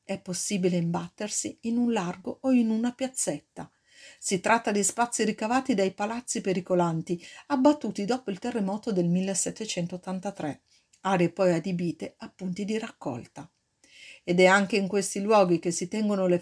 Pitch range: 180-235 Hz